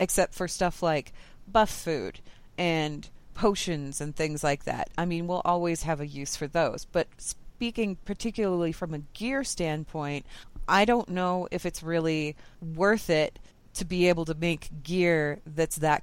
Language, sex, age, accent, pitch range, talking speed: English, female, 30-49, American, 155-200 Hz, 165 wpm